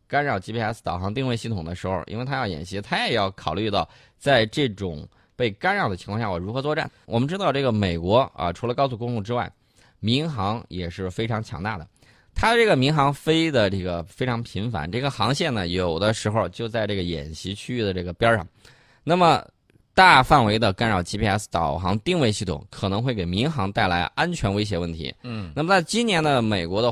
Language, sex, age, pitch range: Chinese, male, 20-39, 95-130 Hz